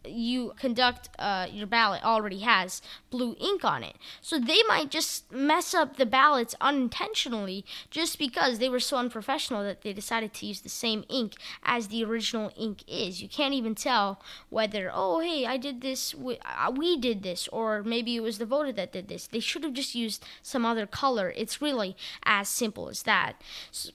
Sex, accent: female, American